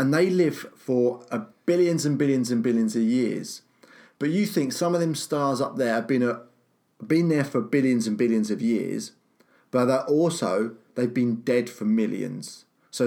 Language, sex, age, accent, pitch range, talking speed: English, male, 30-49, British, 120-155 Hz, 185 wpm